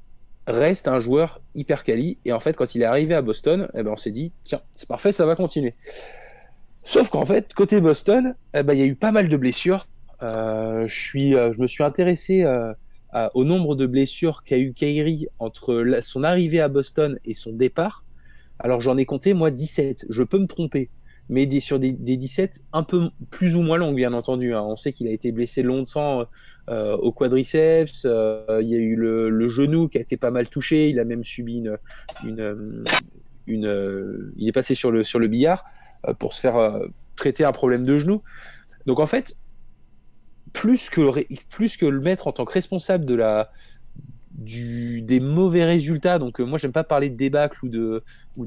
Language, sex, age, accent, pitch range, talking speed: French, male, 20-39, French, 120-160 Hz, 210 wpm